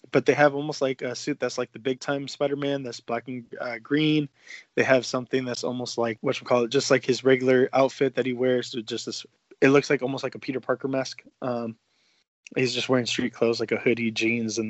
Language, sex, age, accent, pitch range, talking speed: English, male, 20-39, American, 125-140 Hz, 235 wpm